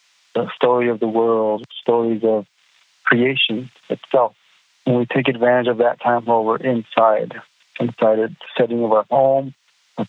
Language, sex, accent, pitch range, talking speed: English, male, American, 115-130 Hz, 155 wpm